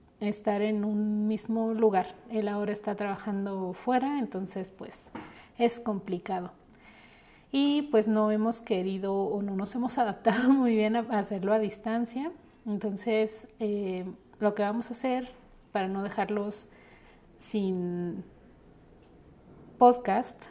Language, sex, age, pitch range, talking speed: Spanish, female, 40-59, 200-230 Hz, 125 wpm